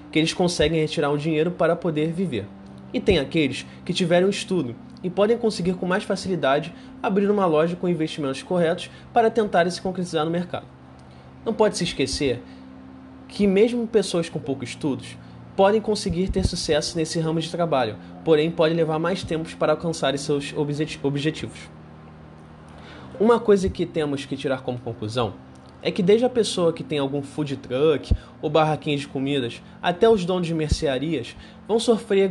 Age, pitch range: 20-39, 130-180 Hz